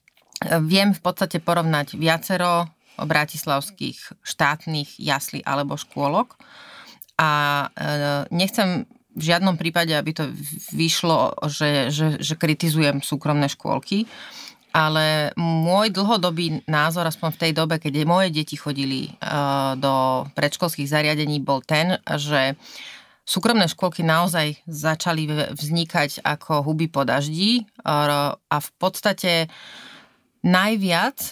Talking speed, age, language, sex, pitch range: 105 wpm, 30-49, Slovak, female, 155-180 Hz